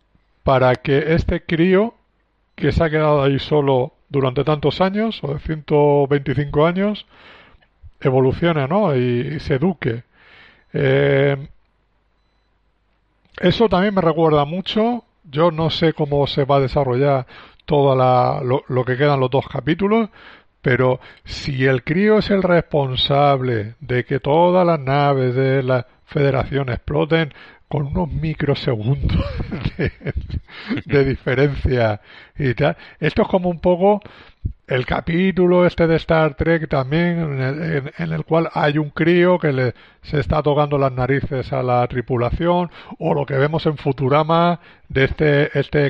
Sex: male